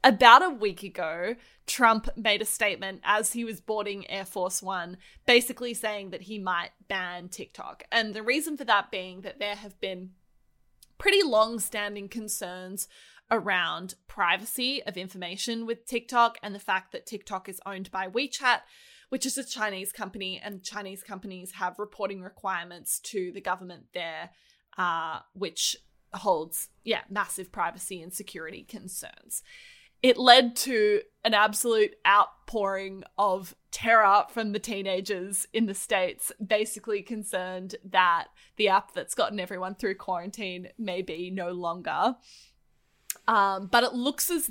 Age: 20-39